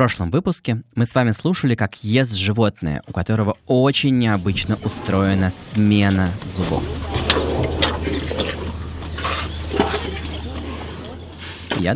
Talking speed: 90 wpm